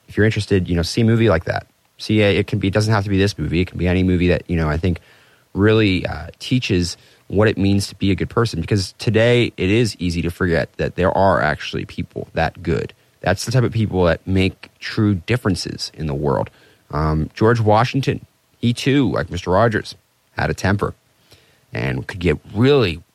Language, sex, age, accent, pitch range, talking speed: English, male, 30-49, American, 90-115 Hz, 215 wpm